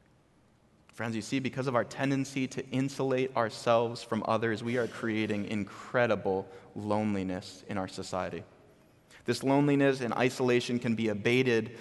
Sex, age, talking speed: male, 20-39, 135 wpm